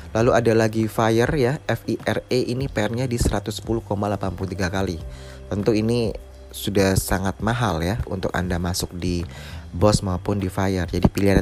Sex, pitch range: male, 95-110 Hz